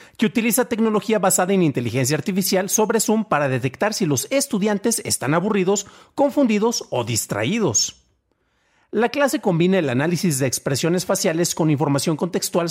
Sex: male